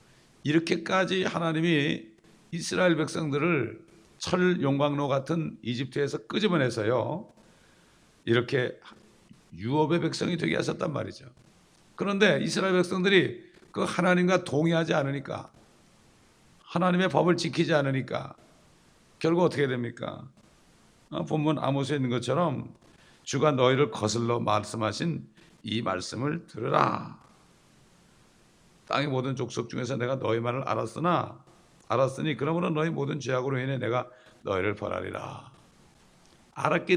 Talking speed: 95 wpm